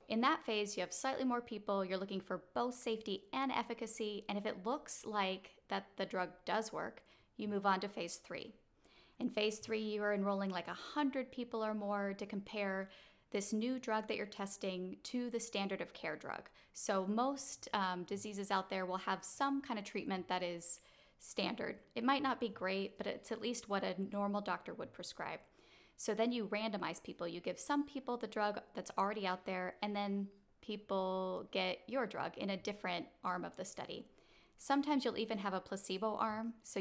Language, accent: English, American